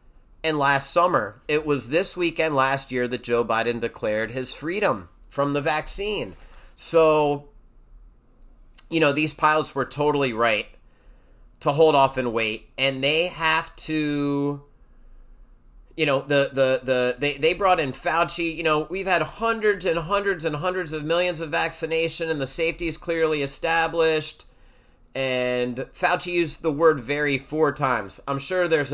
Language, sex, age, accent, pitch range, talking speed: English, male, 30-49, American, 130-165 Hz, 160 wpm